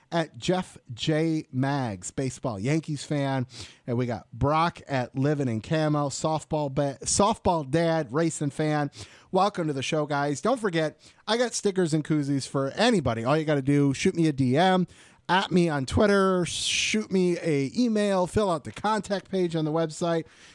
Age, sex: 30-49, male